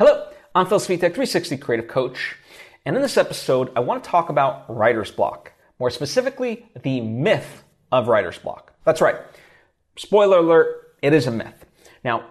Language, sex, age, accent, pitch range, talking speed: English, male, 30-49, American, 120-190 Hz, 165 wpm